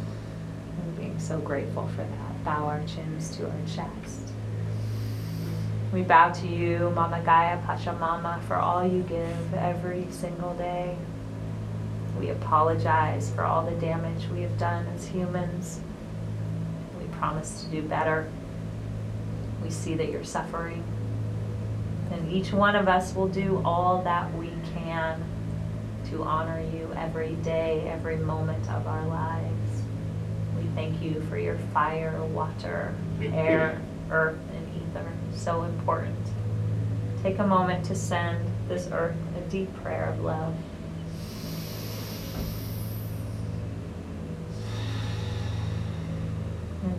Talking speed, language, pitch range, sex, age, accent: 120 wpm, English, 100-160 Hz, female, 30-49, American